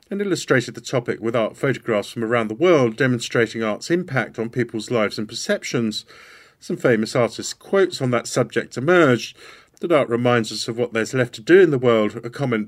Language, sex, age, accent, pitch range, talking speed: English, male, 50-69, British, 115-140 Hz, 200 wpm